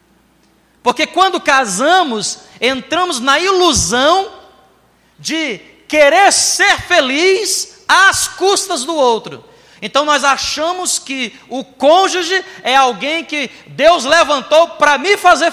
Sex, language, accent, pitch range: male, Portuguese, Brazilian, 215-320 Hz